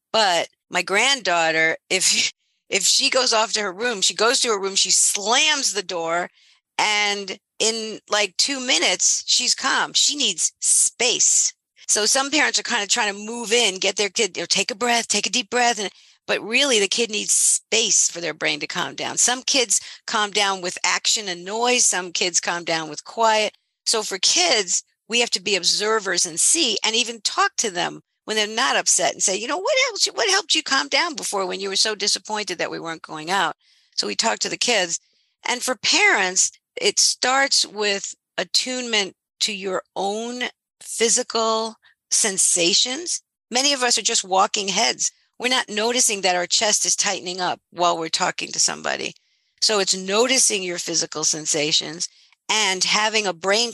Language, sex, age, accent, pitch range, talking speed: English, female, 50-69, American, 185-240 Hz, 185 wpm